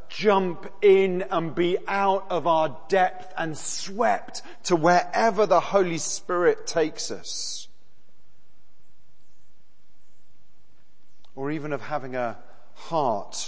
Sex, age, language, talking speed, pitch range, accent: male, 40-59, English, 100 wpm, 145-205 Hz, British